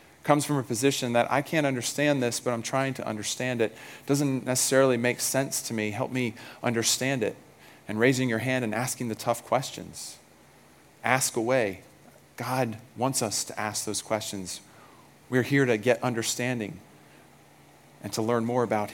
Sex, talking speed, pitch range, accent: male, 170 wpm, 105-130 Hz, American